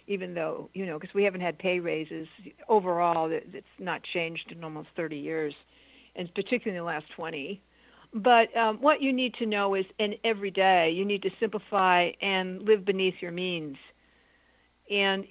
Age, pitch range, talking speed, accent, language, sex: 60-79, 185-220 Hz, 175 wpm, American, English, female